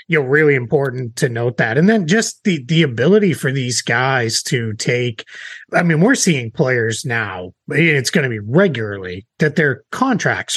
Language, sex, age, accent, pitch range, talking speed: English, male, 30-49, American, 120-160 Hz, 185 wpm